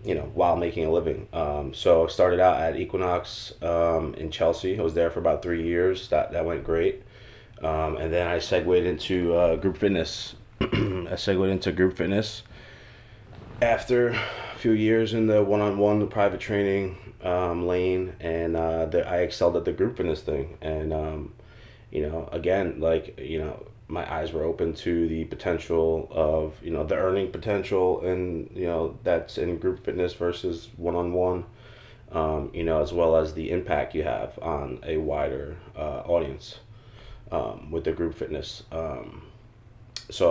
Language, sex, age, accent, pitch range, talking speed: English, male, 20-39, American, 80-105 Hz, 170 wpm